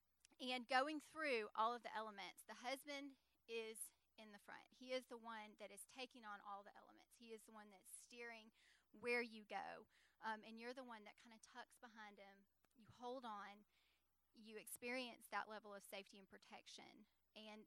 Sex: female